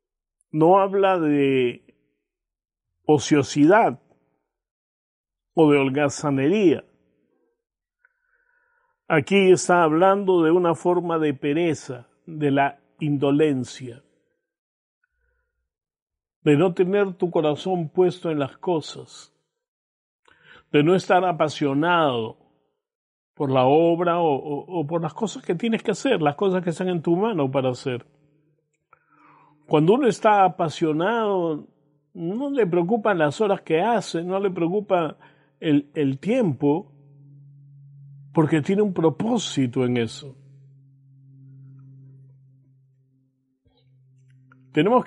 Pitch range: 140-195 Hz